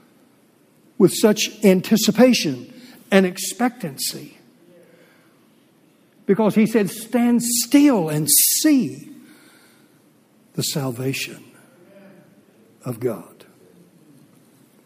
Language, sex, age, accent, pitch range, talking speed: English, male, 60-79, American, 155-200 Hz, 65 wpm